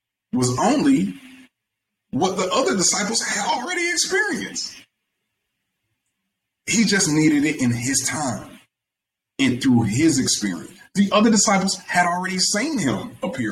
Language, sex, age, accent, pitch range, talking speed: English, male, 30-49, American, 110-180 Hz, 125 wpm